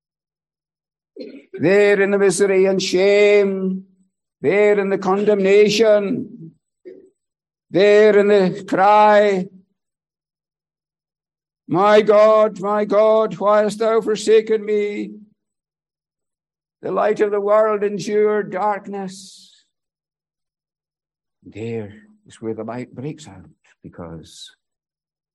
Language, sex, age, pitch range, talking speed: English, male, 60-79, 150-210 Hz, 90 wpm